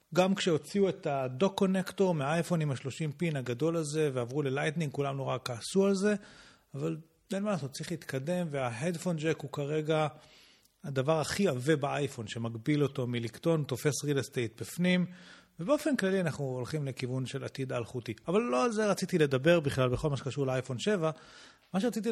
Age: 40-59